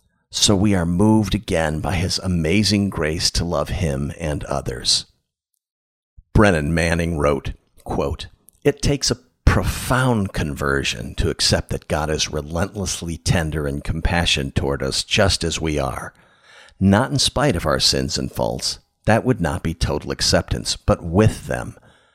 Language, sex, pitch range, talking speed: English, male, 80-105 Hz, 145 wpm